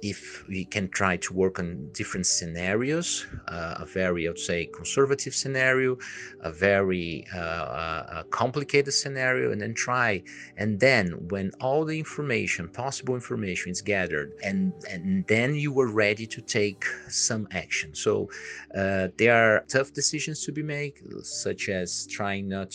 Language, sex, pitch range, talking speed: Portuguese, male, 95-130 Hz, 155 wpm